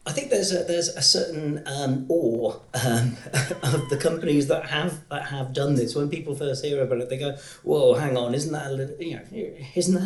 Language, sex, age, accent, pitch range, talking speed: English, male, 40-59, British, 115-145 Hz, 220 wpm